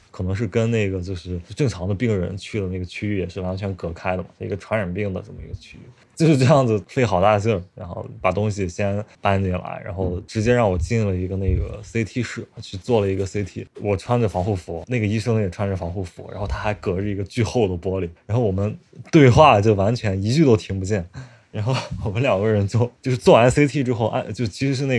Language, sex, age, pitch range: Chinese, male, 20-39, 95-115 Hz